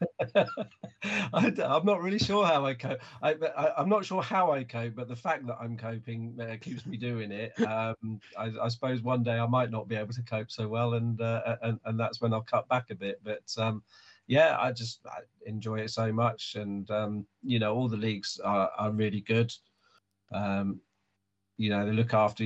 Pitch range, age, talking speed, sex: 105-115 Hz, 40-59, 215 wpm, male